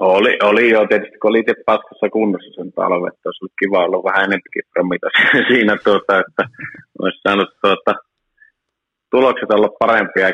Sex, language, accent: male, Finnish, native